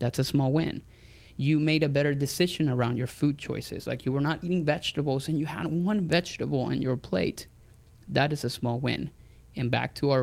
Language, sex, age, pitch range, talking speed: English, male, 20-39, 125-150 Hz, 210 wpm